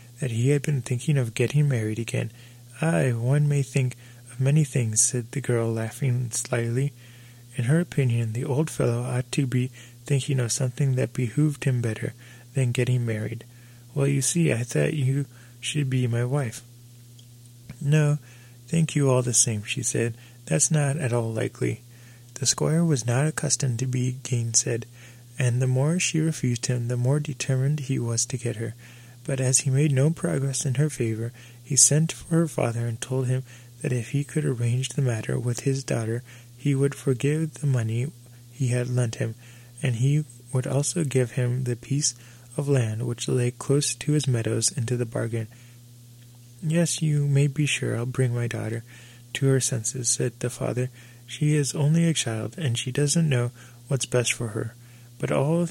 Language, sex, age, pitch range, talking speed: English, male, 20-39, 120-140 Hz, 185 wpm